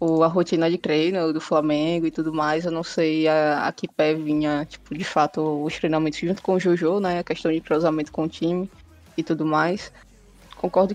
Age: 20-39